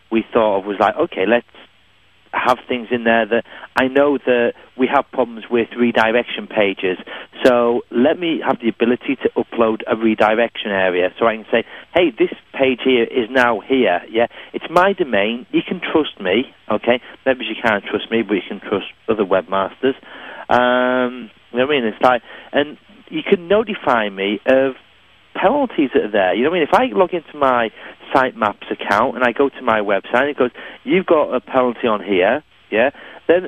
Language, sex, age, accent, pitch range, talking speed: English, male, 40-59, British, 115-160 Hz, 195 wpm